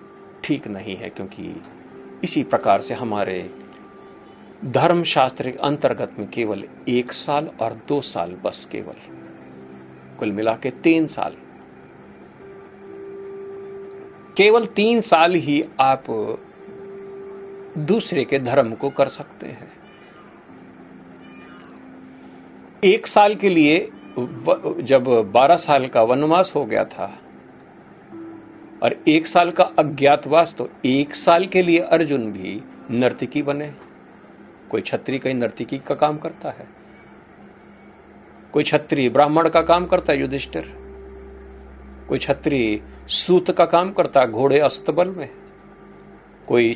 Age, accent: 50-69, native